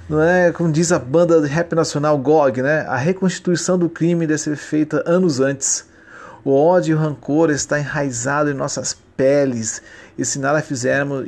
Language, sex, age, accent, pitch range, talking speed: Portuguese, male, 40-59, Brazilian, 135-175 Hz, 180 wpm